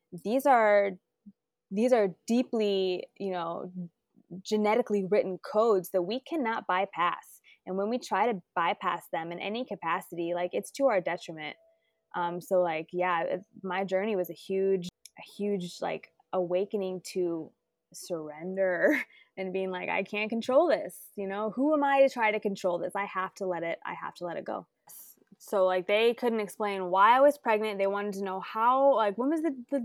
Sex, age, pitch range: female, 20-39, 185-225 Hz